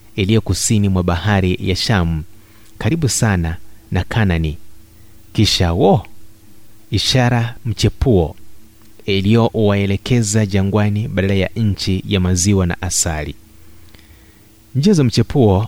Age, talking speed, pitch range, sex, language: 30-49, 95 wpm, 95-110 Hz, male, Swahili